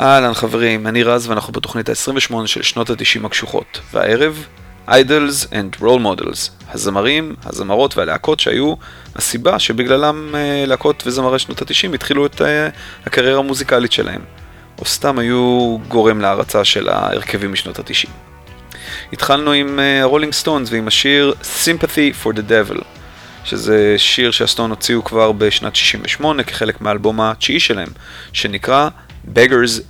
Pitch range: 105-135 Hz